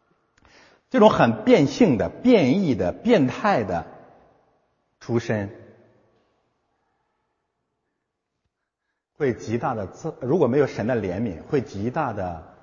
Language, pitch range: Chinese, 105-150 Hz